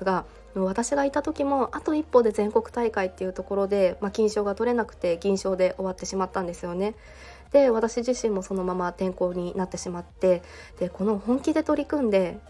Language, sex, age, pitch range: Japanese, female, 20-39, 185-235 Hz